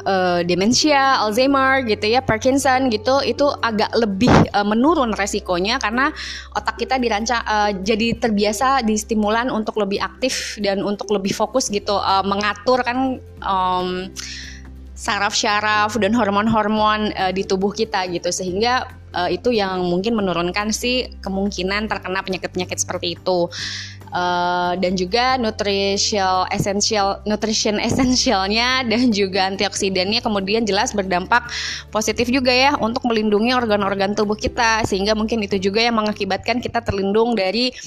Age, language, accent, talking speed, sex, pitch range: 20-39, Indonesian, native, 130 wpm, female, 190-235 Hz